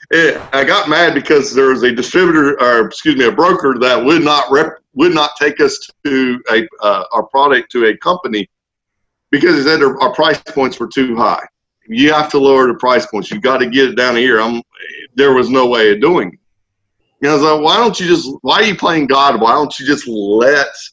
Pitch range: 115-150 Hz